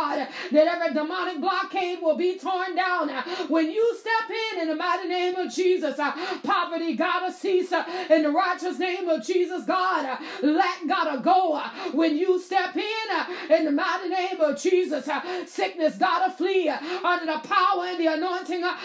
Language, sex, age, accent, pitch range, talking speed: English, female, 30-49, American, 330-385 Hz, 160 wpm